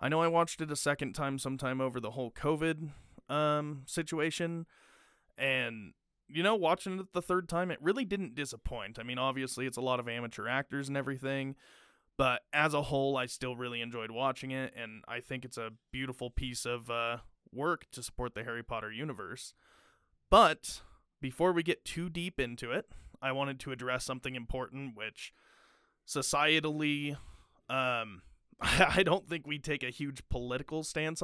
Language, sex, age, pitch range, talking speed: English, male, 20-39, 125-155 Hz, 175 wpm